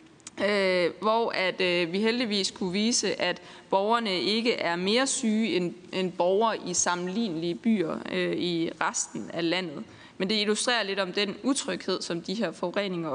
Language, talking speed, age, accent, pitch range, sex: Danish, 160 wpm, 20-39, native, 180-230 Hz, female